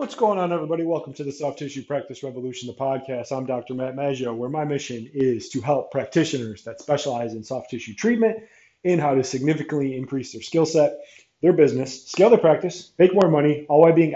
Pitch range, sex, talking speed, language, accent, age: 130-165 Hz, male, 210 wpm, English, American, 30-49